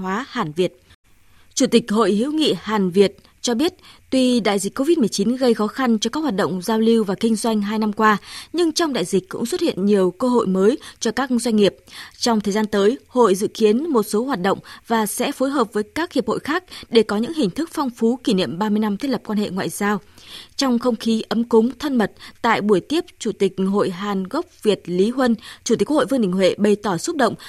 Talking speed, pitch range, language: 240 wpm, 205-260 Hz, Vietnamese